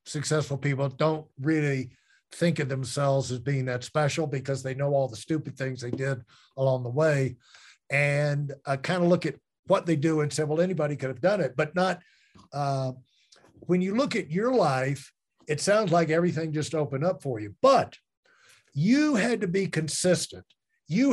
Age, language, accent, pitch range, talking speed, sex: 50-69, English, American, 135-175 Hz, 185 wpm, male